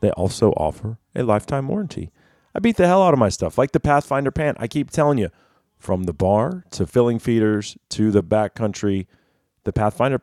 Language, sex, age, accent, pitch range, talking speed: English, male, 30-49, American, 95-125 Hz, 195 wpm